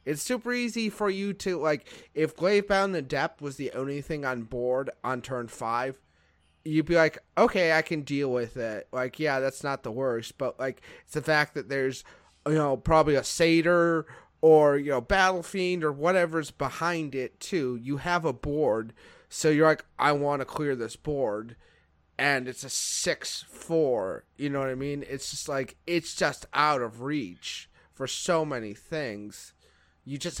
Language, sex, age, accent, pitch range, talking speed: English, male, 30-49, American, 120-150 Hz, 180 wpm